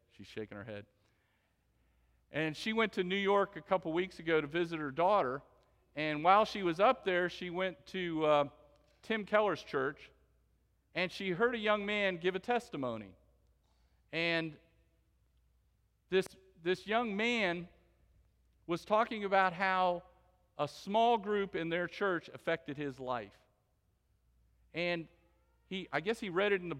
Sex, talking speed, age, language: male, 150 wpm, 50-69, English